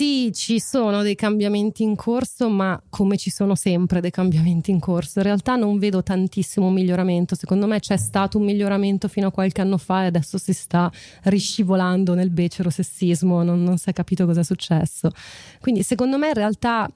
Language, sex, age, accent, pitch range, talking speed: Italian, female, 30-49, native, 170-200 Hz, 190 wpm